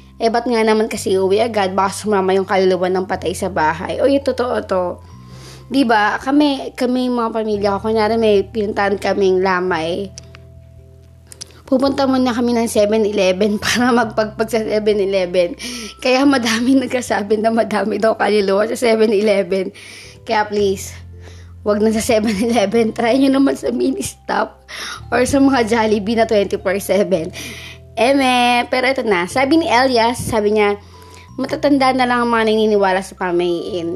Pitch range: 185-235 Hz